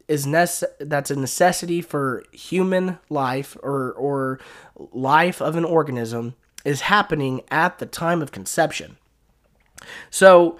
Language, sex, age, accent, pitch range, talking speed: English, male, 20-39, American, 140-175 Hz, 125 wpm